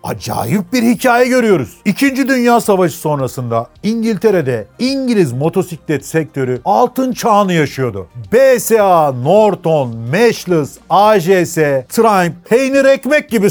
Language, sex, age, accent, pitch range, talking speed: Turkish, male, 40-59, native, 140-210 Hz, 100 wpm